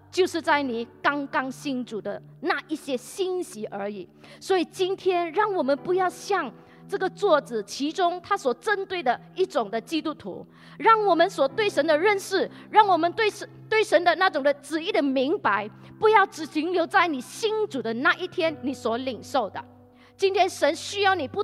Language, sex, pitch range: Chinese, female, 220-360 Hz